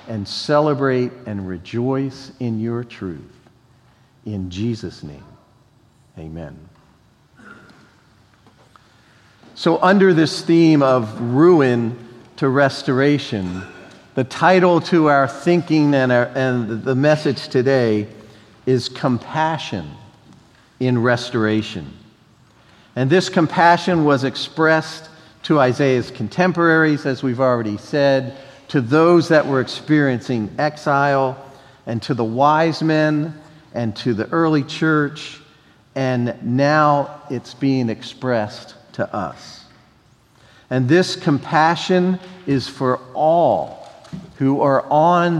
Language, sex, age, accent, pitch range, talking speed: English, male, 50-69, American, 120-150 Hz, 100 wpm